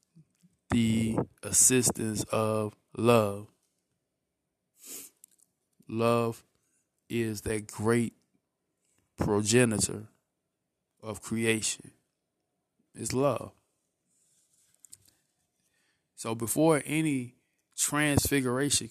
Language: English